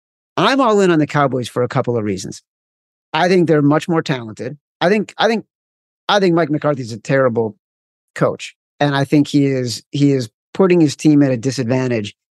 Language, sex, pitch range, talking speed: English, male, 130-165 Hz, 205 wpm